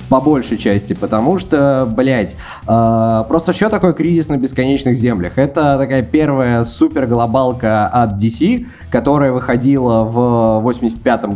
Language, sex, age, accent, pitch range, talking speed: Russian, male, 20-39, native, 110-140 Hz, 125 wpm